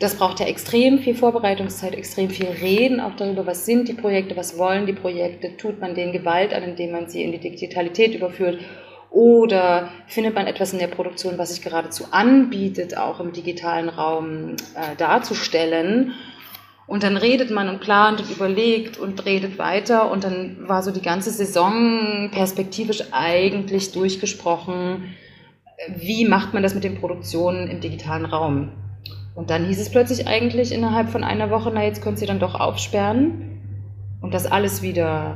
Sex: female